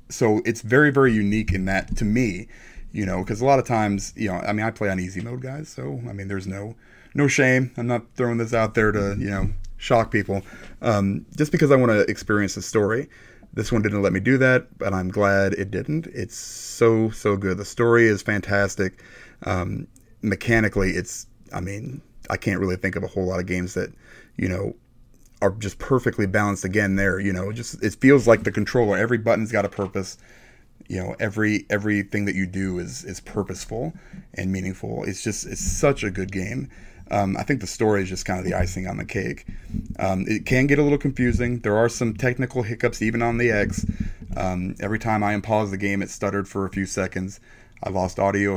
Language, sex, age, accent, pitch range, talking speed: English, male, 30-49, American, 95-115 Hz, 215 wpm